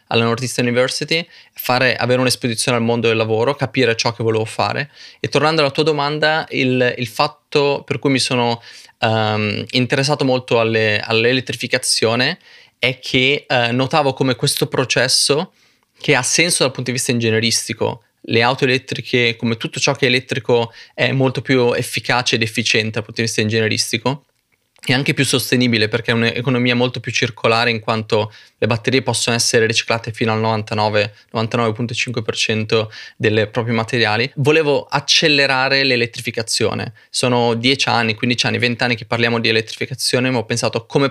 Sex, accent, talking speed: male, native, 155 wpm